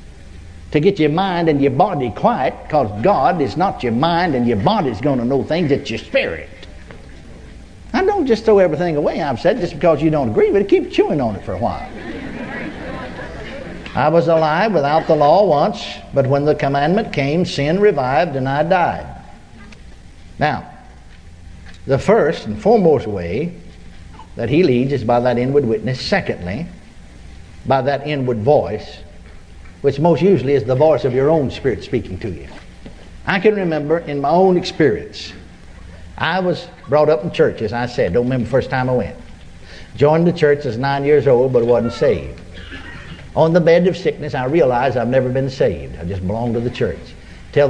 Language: English